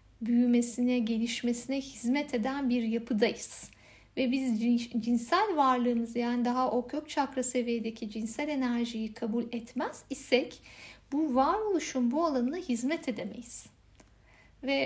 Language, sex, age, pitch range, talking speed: Turkish, female, 60-79, 235-270 Hz, 115 wpm